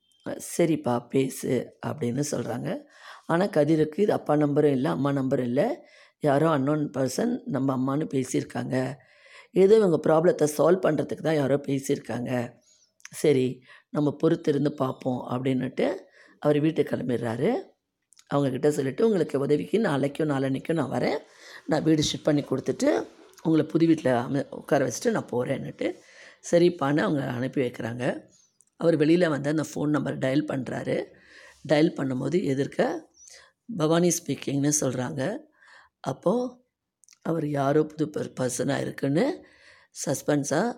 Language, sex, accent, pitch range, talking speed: Tamil, female, native, 135-165 Hz, 120 wpm